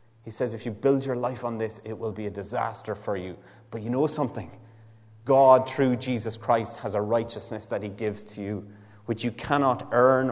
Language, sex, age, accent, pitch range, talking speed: English, male, 30-49, Irish, 100-120 Hz, 210 wpm